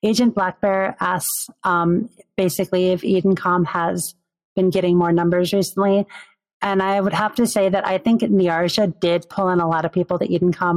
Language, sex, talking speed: English, female, 180 wpm